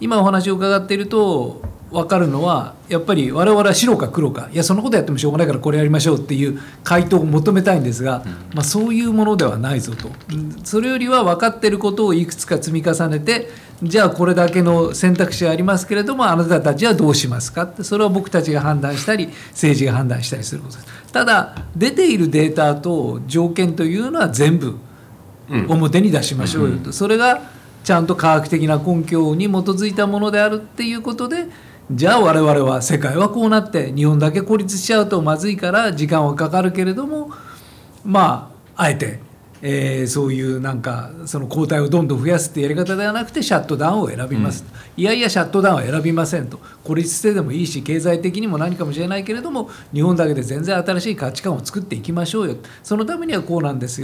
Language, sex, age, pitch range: Japanese, male, 50-69, 145-205 Hz